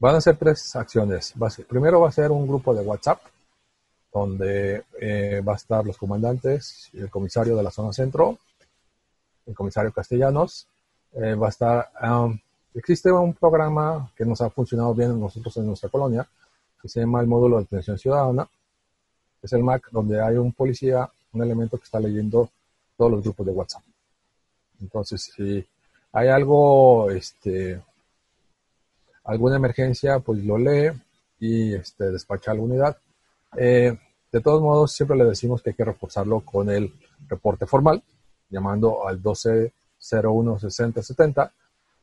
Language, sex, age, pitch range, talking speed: Spanish, male, 40-59, 100-130 Hz, 155 wpm